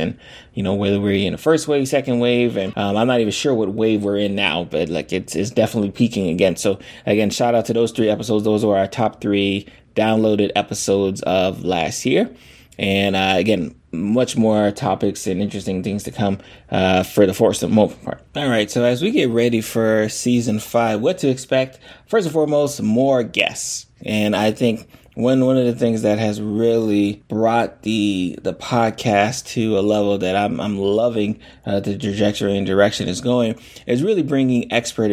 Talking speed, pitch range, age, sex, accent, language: 200 wpm, 100-120 Hz, 20-39, male, American, English